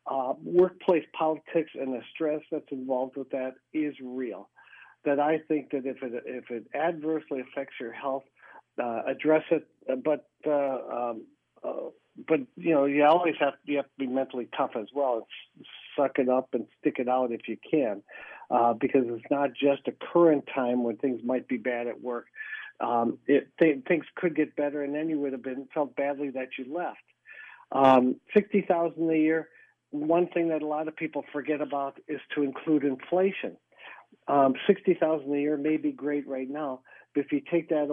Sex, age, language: male, 50-69, English